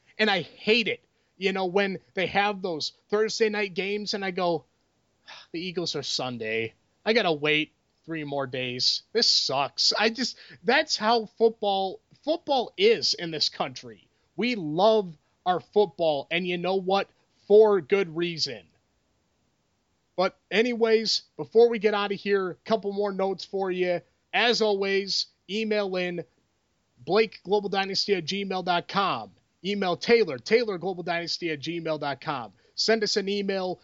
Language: English